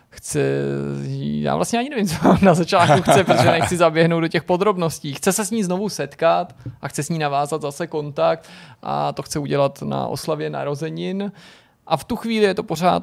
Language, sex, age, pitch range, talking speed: Czech, male, 20-39, 135-165 Hz, 190 wpm